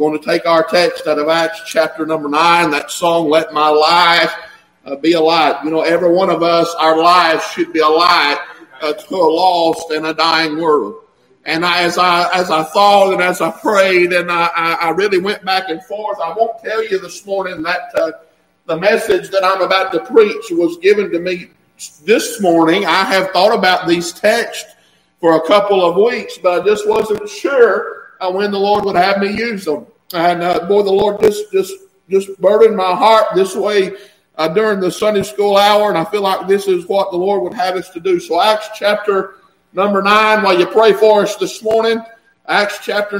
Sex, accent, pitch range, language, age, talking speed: male, American, 170-220 Hz, English, 50-69, 210 wpm